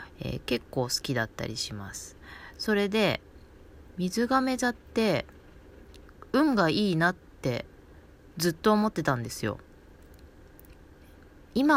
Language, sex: Japanese, female